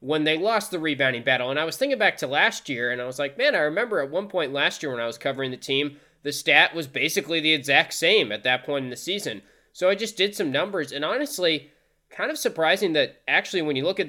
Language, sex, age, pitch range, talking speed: English, male, 20-39, 125-170 Hz, 265 wpm